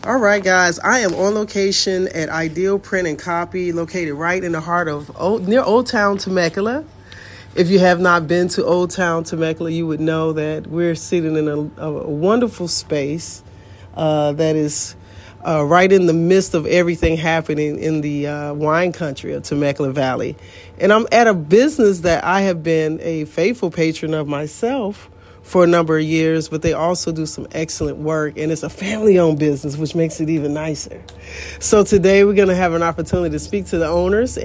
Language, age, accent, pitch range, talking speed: English, 40-59, American, 150-185 Hz, 190 wpm